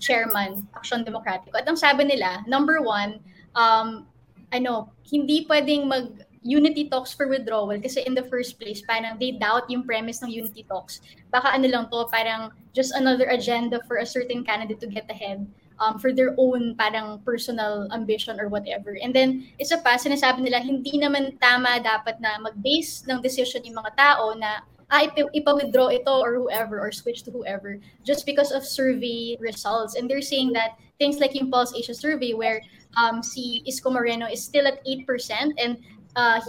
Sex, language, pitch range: female, English, 225-265 Hz